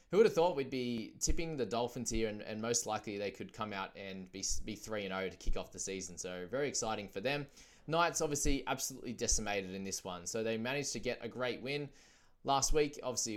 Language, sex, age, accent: English, male, 20-39, Australian